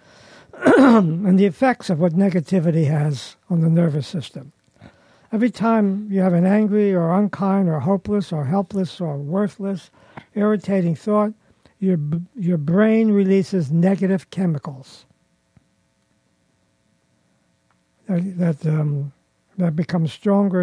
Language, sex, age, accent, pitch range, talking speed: English, male, 60-79, American, 145-195 Hz, 115 wpm